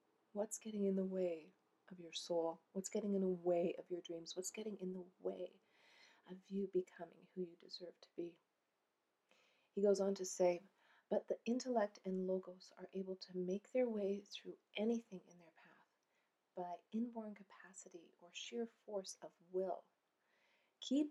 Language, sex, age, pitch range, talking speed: English, female, 40-59, 180-210 Hz, 170 wpm